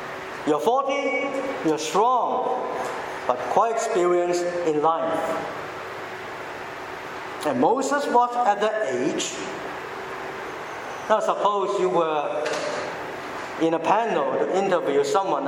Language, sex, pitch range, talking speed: English, male, 165-235 Hz, 95 wpm